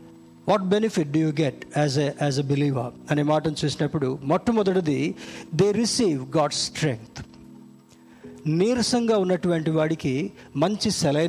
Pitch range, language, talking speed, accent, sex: 140-195 Hz, Telugu, 160 wpm, native, male